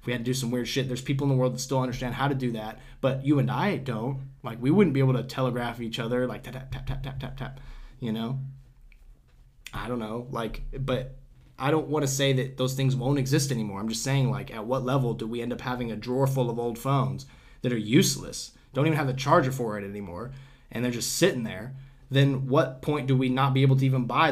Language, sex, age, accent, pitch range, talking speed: English, male, 20-39, American, 120-135 Hz, 255 wpm